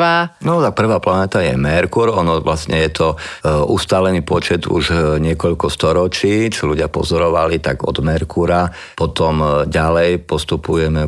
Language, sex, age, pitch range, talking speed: Slovak, male, 50-69, 75-95 Hz, 130 wpm